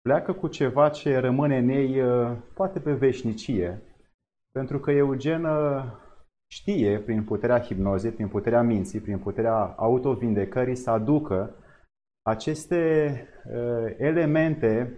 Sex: male